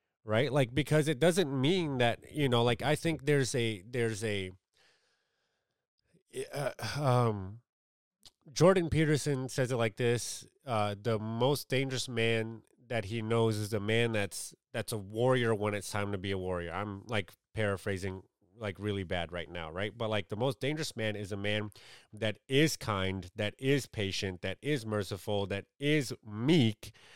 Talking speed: 170 wpm